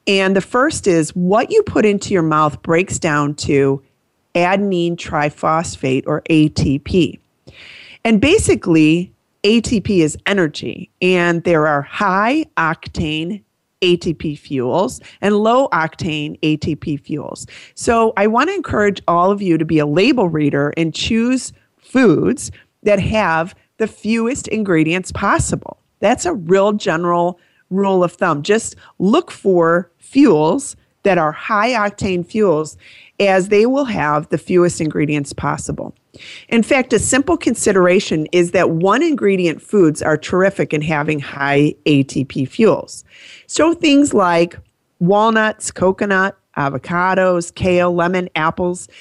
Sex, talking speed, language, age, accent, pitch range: female, 130 wpm, English, 30-49, American, 155-205 Hz